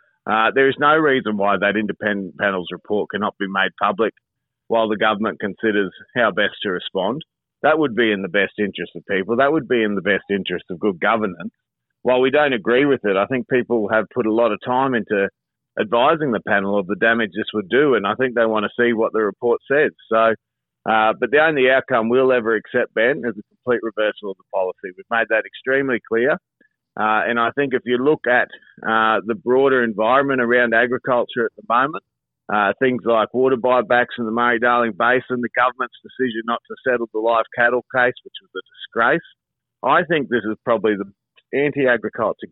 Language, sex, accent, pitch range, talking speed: English, male, Australian, 105-130 Hz, 205 wpm